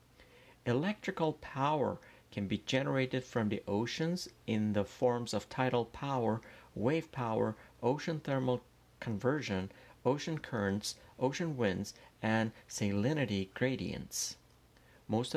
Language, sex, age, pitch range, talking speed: Persian, male, 50-69, 105-130 Hz, 105 wpm